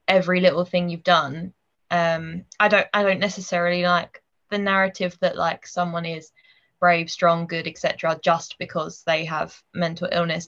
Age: 20-39